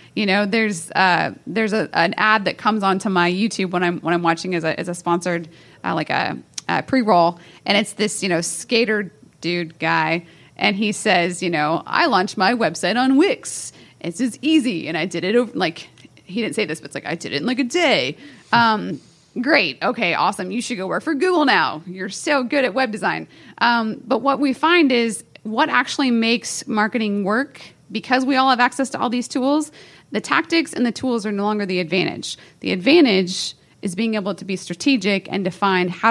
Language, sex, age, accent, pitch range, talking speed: English, female, 30-49, American, 180-245 Hz, 215 wpm